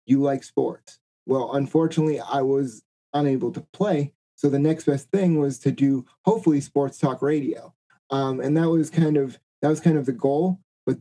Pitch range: 130-150 Hz